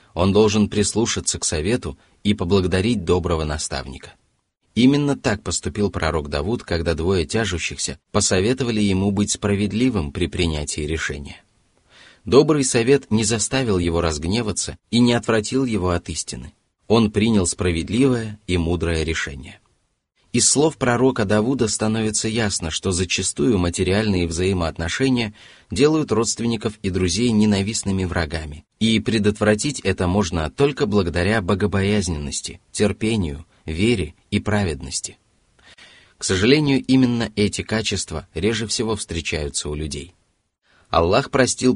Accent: native